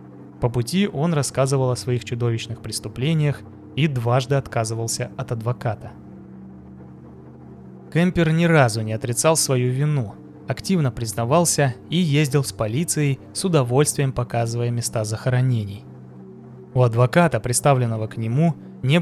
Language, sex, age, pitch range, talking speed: Russian, male, 20-39, 115-150 Hz, 115 wpm